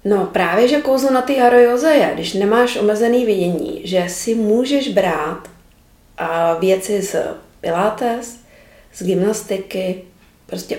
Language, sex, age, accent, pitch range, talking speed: Czech, female, 40-59, native, 185-220 Hz, 120 wpm